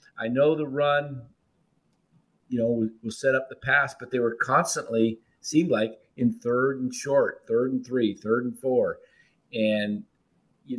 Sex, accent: male, American